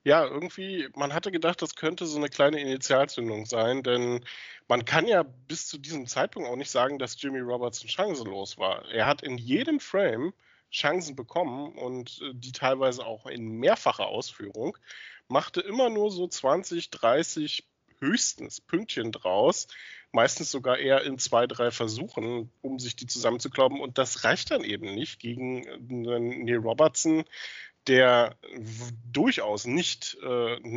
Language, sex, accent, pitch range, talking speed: German, male, German, 120-150 Hz, 145 wpm